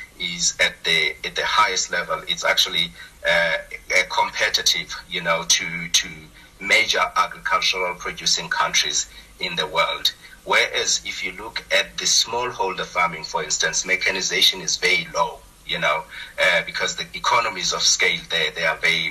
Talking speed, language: 155 wpm, English